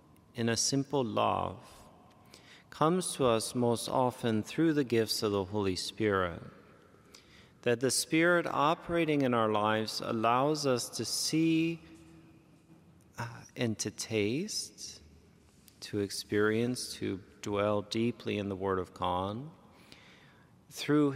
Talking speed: 115 wpm